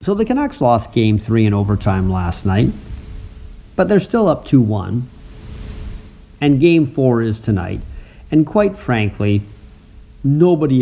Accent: American